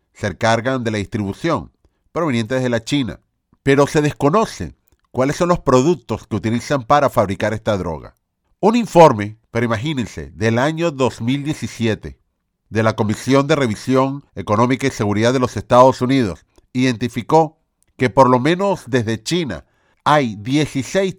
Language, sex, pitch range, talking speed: Spanish, male, 110-150 Hz, 140 wpm